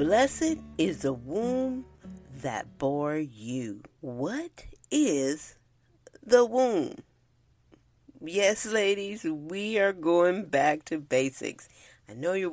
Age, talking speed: 40-59, 105 wpm